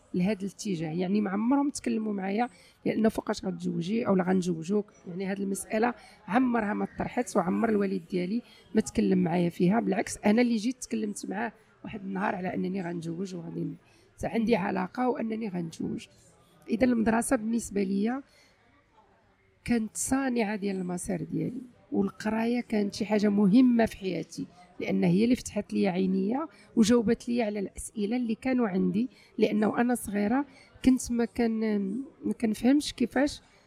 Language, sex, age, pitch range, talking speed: Arabic, female, 40-59, 195-240 Hz, 145 wpm